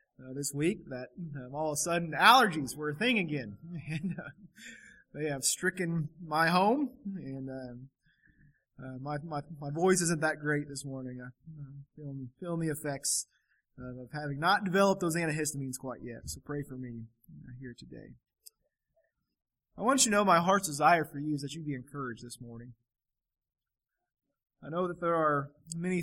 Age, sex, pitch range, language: 20-39, male, 130-170 Hz, English